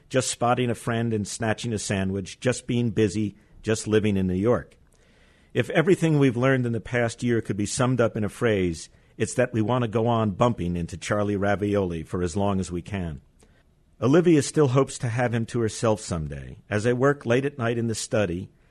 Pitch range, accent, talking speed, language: 95-125 Hz, American, 210 wpm, English